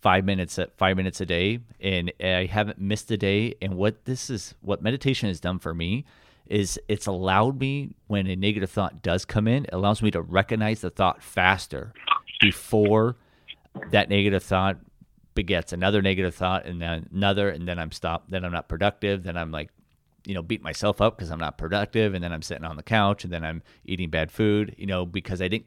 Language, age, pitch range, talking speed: English, 30-49, 85-100 Hz, 210 wpm